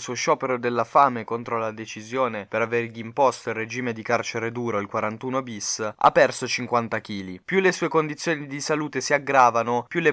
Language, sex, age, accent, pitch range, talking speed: Italian, male, 20-39, native, 115-140 Hz, 190 wpm